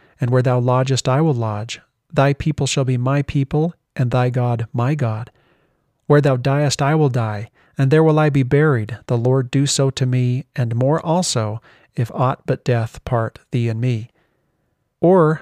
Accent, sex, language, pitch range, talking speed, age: American, male, English, 120-150 Hz, 185 wpm, 40-59